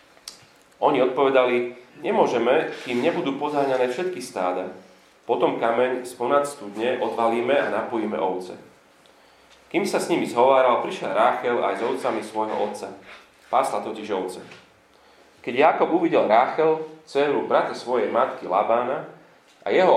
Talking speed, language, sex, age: 130 wpm, Slovak, male, 30-49